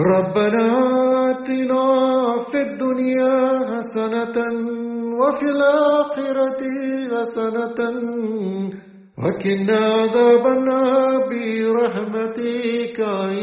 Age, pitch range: 40-59, 210-260 Hz